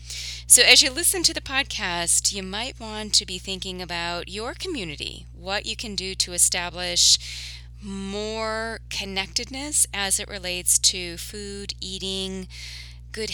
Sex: female